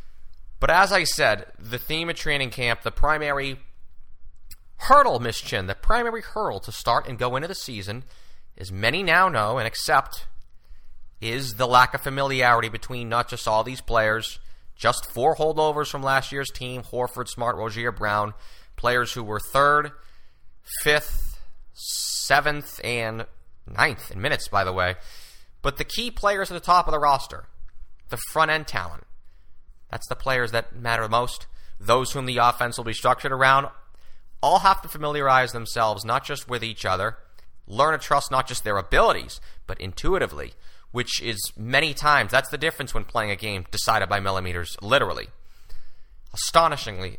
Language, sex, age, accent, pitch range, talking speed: English, male, 30-49, American, 95-135 Hz, 165 wpm